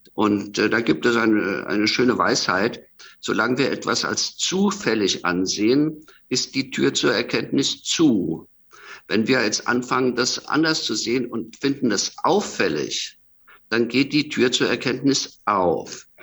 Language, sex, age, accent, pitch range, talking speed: German, male, 50-69, German, 100-125 Hz, 145 wpm